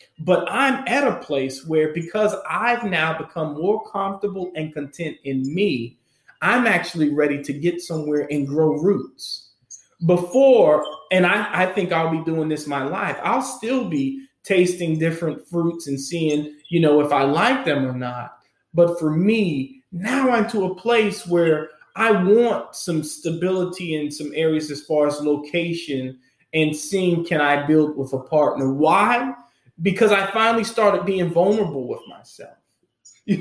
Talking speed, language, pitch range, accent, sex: 160 wpm, English, 150-200 Hz, American, male